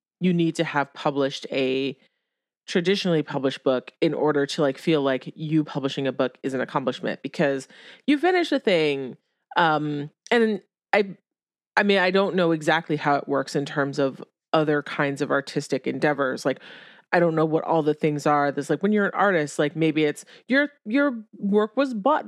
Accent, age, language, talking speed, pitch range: American, 30-49, English, 190 wpm, 145-185 Hz